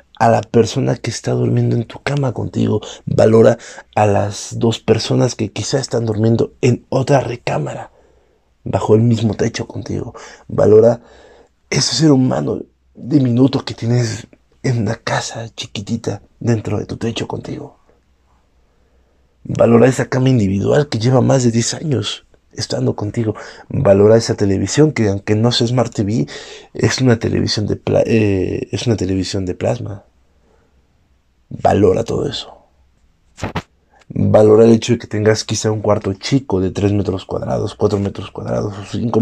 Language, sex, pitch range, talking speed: Spanish, male, 100-120 Hz, 145 wpm